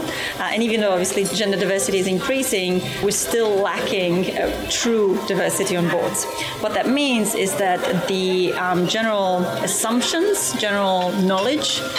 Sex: female